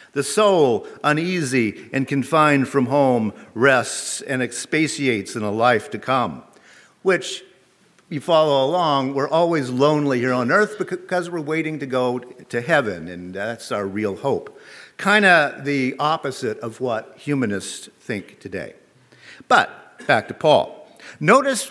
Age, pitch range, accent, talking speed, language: 50-69, 130-175 Hz, American, 140 wpm, English